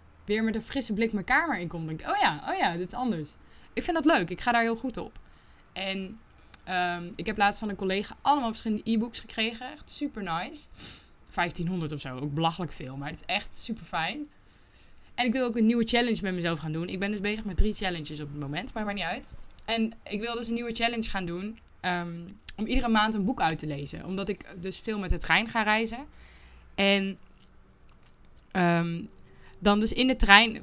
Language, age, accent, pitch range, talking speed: Dutch, 20-39, Dutch, 170-220 Hz, 225 wpm